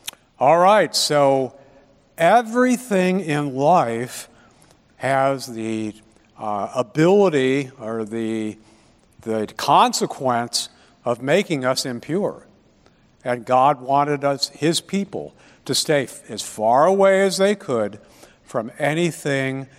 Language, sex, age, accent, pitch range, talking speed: English, male, 60-79, American, 120-180 Hz, 105 wpm